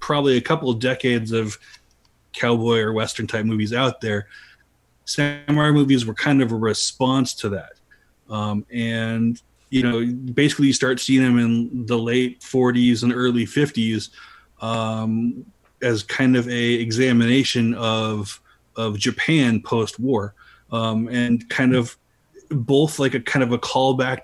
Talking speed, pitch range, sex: 145 wpm, 110-130 Hz, male